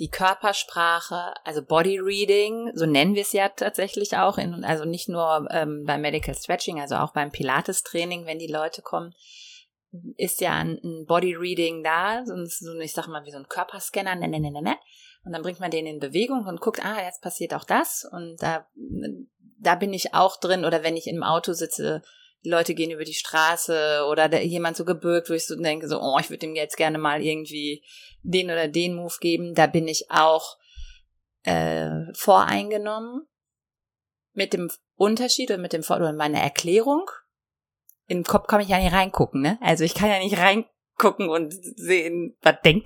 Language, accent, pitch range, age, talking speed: German, German, 160-200 Hz, 30-49, 195 wpm